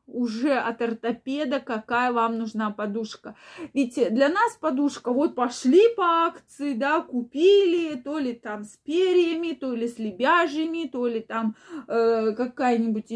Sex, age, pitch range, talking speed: female, 20-39, 225-275 Hz, 140 wpm